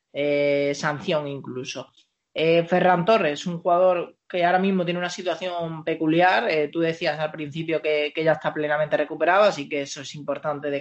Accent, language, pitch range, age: Spanish, Spanish, 145-180 Hz, 20-39